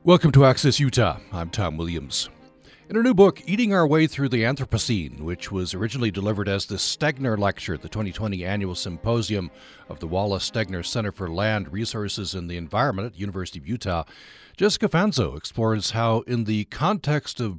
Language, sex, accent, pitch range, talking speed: English, male, American, 90-130 Hz, 185 wpm